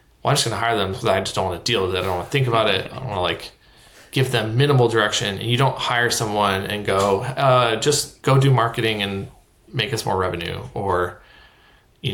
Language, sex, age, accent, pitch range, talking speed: English, male, 20-39, American, 100-125 Hz, 245 wpm